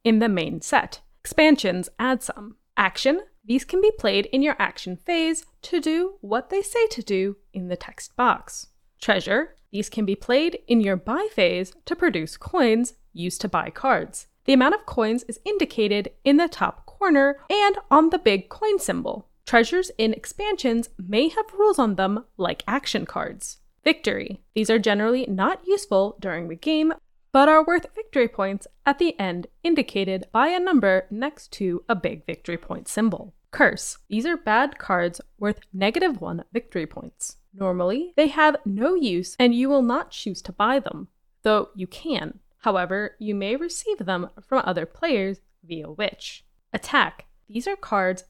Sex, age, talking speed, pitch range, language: female, 20-39, 170 wpm, 195-305 Hz, English